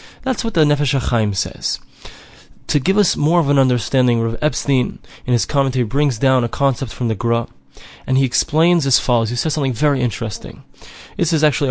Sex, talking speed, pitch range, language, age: male, 190 wpm, 120-150 Hz, English, 20-39